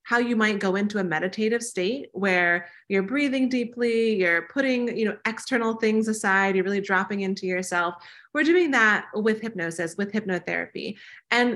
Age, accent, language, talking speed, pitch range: 30-49, American, English, 165 wpm, 190-240 Hz